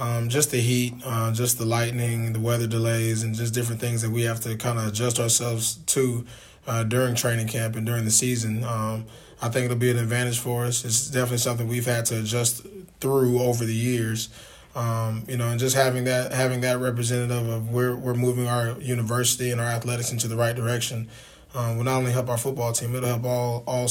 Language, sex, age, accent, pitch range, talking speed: English, male, 20-39, American, 115-125 Hz, 220 wpm